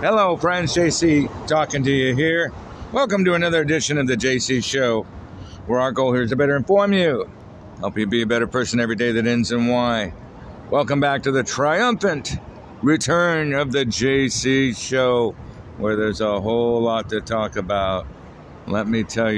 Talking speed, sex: 175 wpm, male